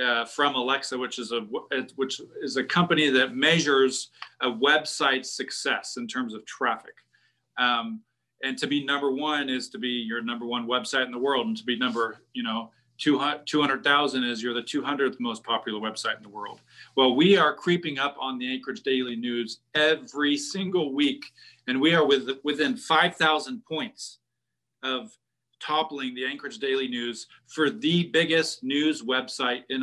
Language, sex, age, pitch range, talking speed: English, male, 40-59, 125-155 Hz, 175 wpm